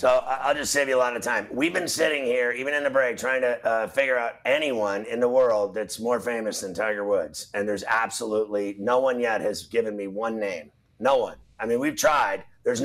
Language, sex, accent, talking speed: English, male, American, 235 wpm